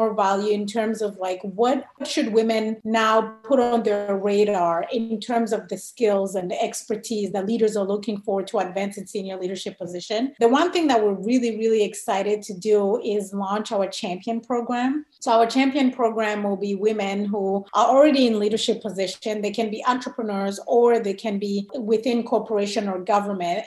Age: 30-49